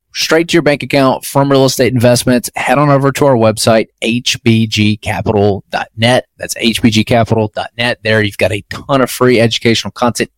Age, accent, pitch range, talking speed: 30-49, American, 105-130 Hz, 155 wpm